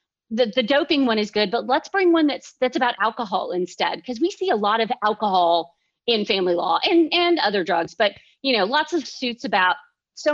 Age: 40-59